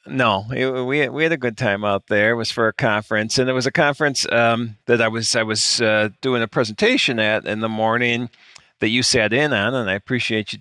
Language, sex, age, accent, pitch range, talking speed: English, male, 50-69, American, 105-130 Hz, 230 wpm